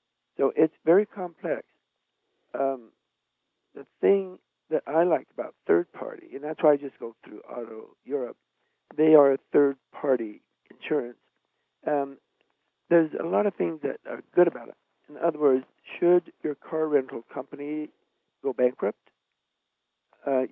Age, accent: 60-79, American